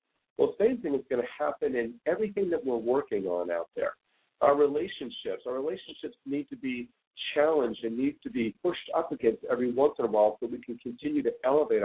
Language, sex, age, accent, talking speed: English, male, 50-69, American, 215 wpm